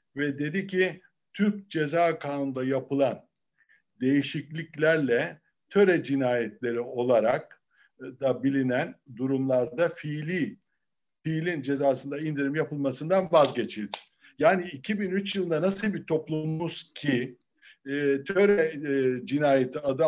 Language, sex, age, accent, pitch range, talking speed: Turkish, male, 60-79, native, 135-180 Hz, 90 wpm